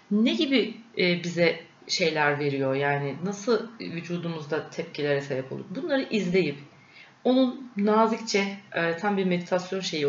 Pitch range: 155-220 Hz